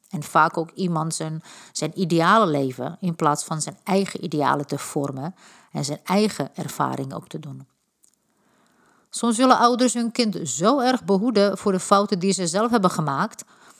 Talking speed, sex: 170 wpm, female